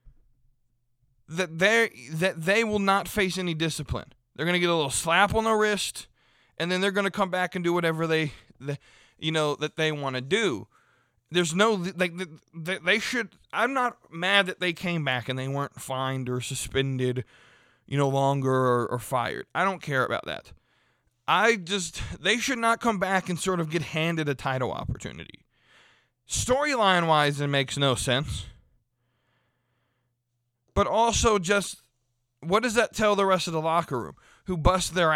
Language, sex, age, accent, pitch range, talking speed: English, male, 20-39, American, 135-190 Hz, 180 wpm